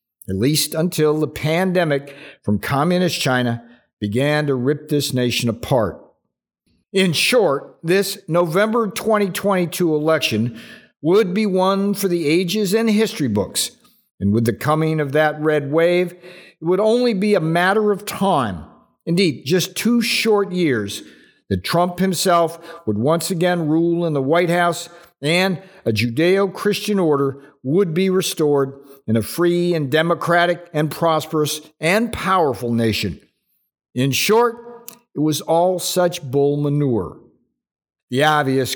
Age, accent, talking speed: 50-69, American, 135 wpm